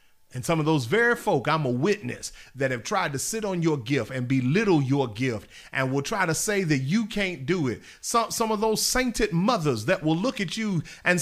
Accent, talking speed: American, 230 wpm